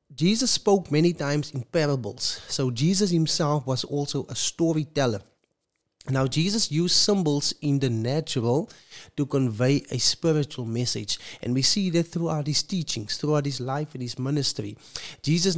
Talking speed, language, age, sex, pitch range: 150 wpm, English, 30-49, male, 135-175 Hz